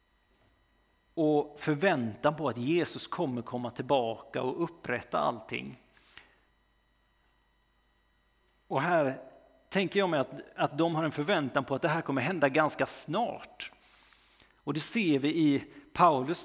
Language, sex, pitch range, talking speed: Swedish, male, 130-160 Hz, 130 wpm